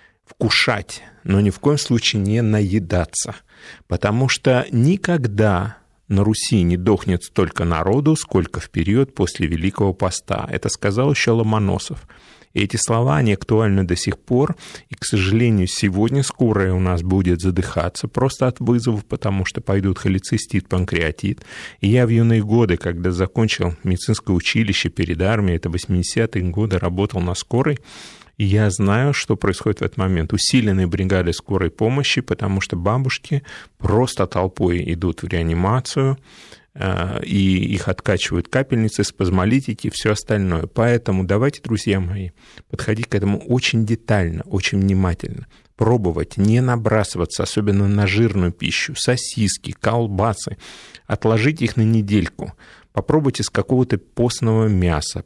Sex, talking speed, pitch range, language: male, 135 wpm, 95-120 Hz, Russian